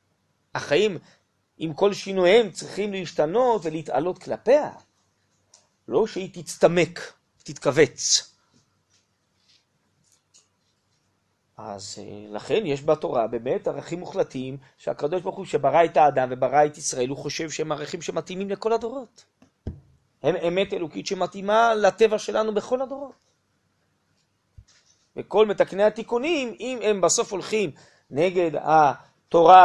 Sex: male